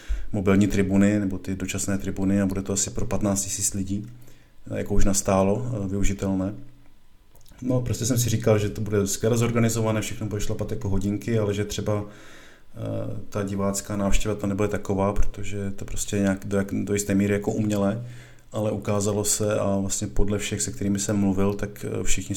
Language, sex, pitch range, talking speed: Czech, male, 100-105 Hz, 175 wpm